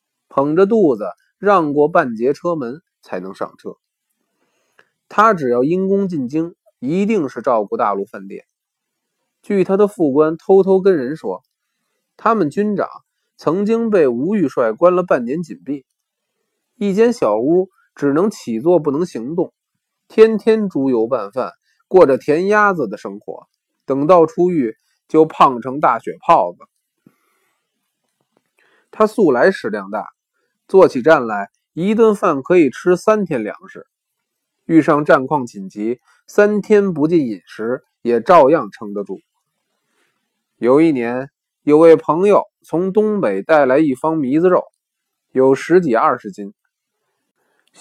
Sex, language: male, Chinese